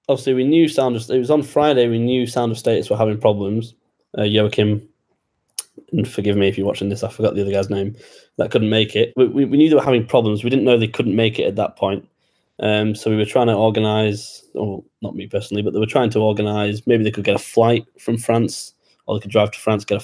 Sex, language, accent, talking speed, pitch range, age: male, English, British, 260 wpm, 105-120 Hz, 20-39